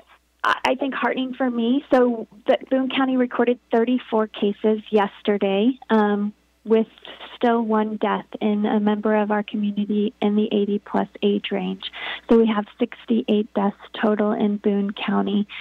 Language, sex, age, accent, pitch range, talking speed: English, female, 20-39, American, 210-235 Hz, 145 wpm